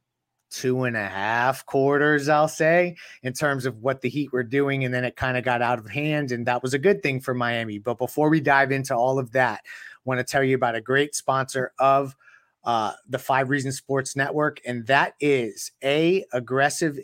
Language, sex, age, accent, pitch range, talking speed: English, male, 30-49, American, 130-155 Hz, 215 wpm